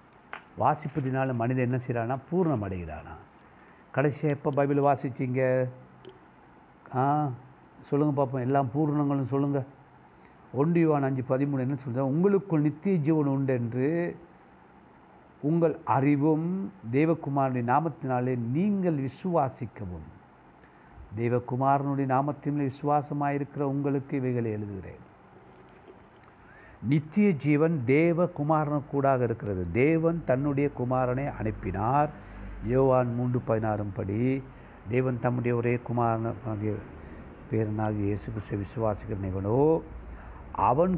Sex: male